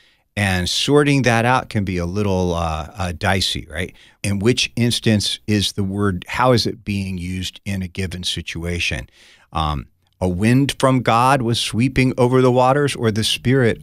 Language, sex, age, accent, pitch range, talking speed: English, male, 50-69, American, 90-115 Hz, 175 wpm